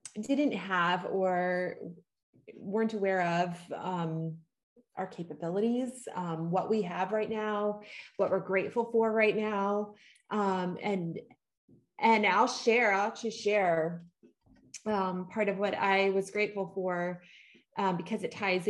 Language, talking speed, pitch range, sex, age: English, 130 wpm, 180-220 Hz, female, 30-49